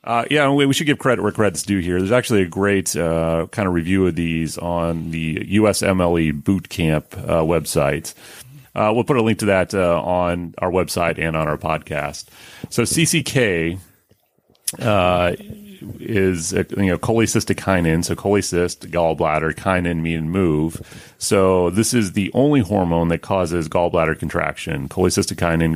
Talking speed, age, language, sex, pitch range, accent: 160 wpm, 30-49, English, male, 80-105 Hz, American